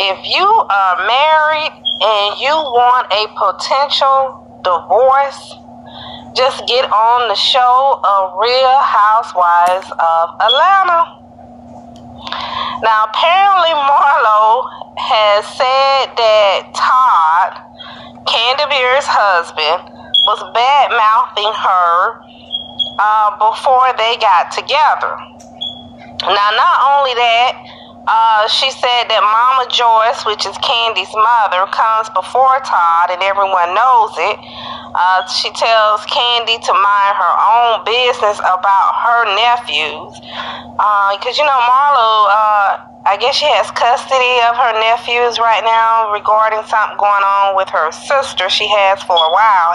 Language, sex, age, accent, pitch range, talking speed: English, female, 30-49, American, 210-265 Hz, 120 wpm